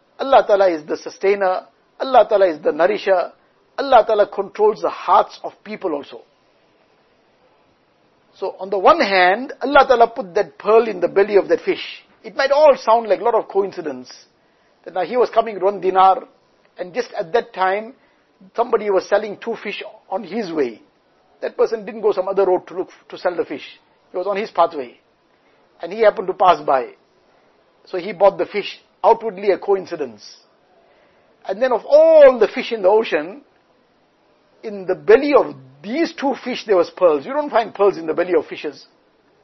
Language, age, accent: English, 60-79, Indian